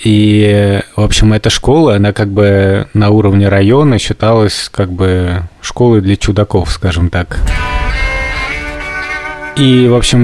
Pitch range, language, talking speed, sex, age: 95-115 Hz, Russian, 130 wpm, male, 20-39